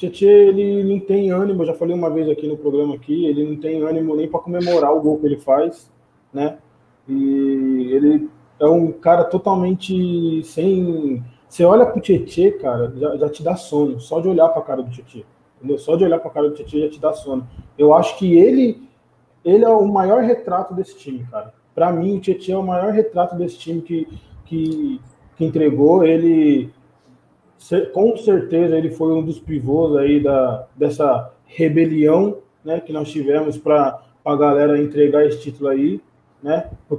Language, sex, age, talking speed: Portuguese, male, 20-39, 185 wpm